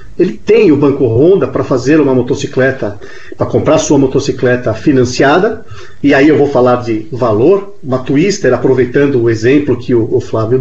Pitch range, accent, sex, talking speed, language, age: 130-205 Hz, Brazilian, male, 170 wpm, Portuguese, 40-59